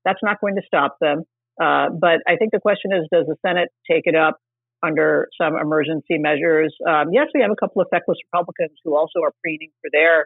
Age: 50-69